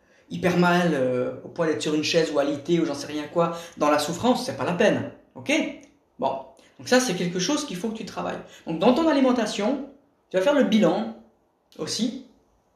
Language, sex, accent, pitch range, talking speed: French, female, French, 155-230 Hz, 215 wpm